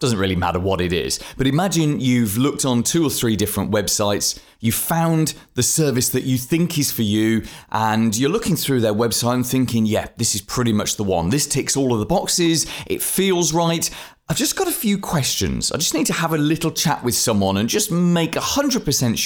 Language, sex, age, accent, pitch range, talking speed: English, male, 30-49, British, 100-145 Hz, 220 wpm